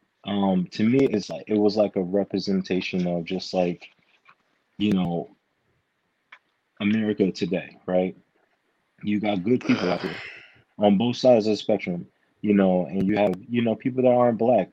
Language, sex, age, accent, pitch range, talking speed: English, male, 20-39, American, 95-105 Hz, 165 wpm